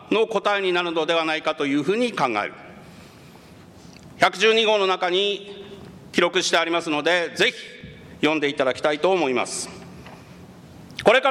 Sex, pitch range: male, 175-240 Hz